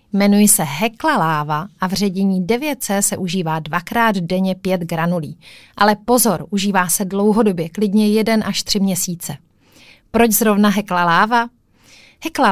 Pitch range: 180-235 Hz